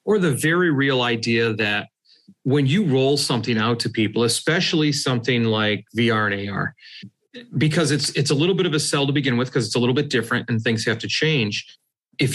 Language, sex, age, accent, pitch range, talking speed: English, male, 40-59, American, 115-145 Hz, 210 wpm